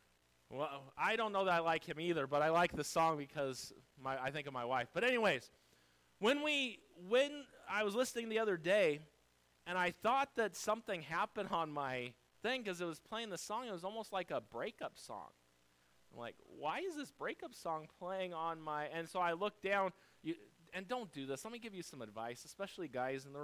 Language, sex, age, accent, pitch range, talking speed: English, male, 30-49, American, 145-235 Hz, 215 wpm